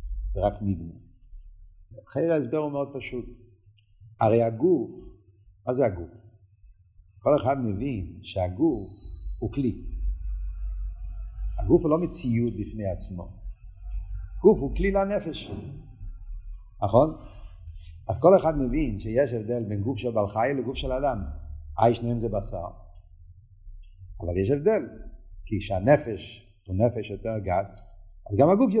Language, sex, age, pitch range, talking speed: Hebrew, male, 50-69, 95-135 Hz, 125 wpm